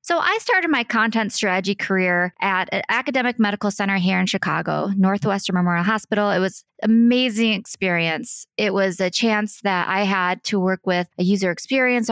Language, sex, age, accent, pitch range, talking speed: English, female, 20-39, American, 185-225 Hz, 180 wpm